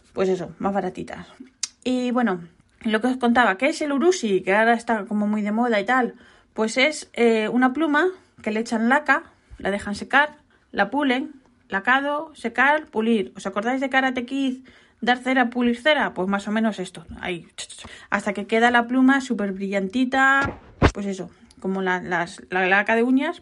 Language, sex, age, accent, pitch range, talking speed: Spanish, female, 20-39, Spanish, 190-245 Hz, 185 wpm